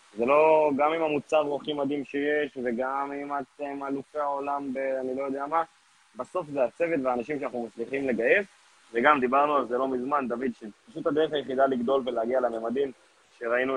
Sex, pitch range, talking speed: male, 125-155 Hz, 175 wpm